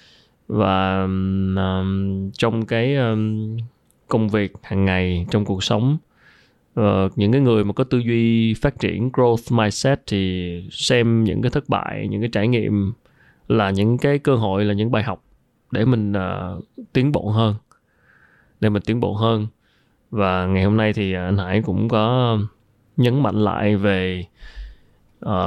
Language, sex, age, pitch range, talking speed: Vietnamese, male, 20-39, 100-120 Hz, 160 wpm